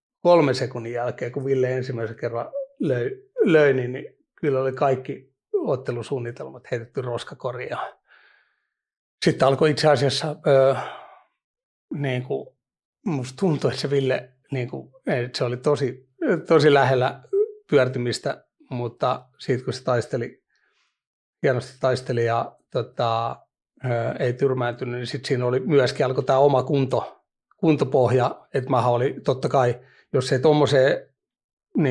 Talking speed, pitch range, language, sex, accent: 115 wpm, 125-140 Hz, Finnish, male, native